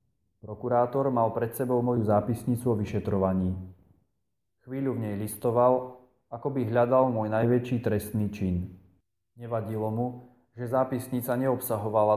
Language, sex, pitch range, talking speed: Slovak, male, 95-125 Hz, 120 wpm